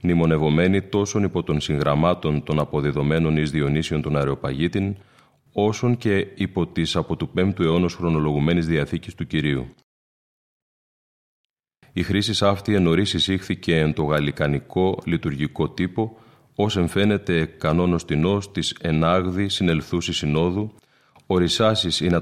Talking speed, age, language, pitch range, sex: 115 wpm, 30-49, Greek, 80-100 Hz, male